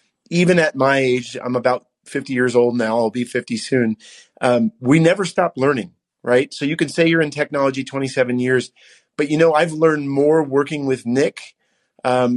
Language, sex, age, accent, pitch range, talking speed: English, male, 30-49, American, 120-145 Hz, 190 wpm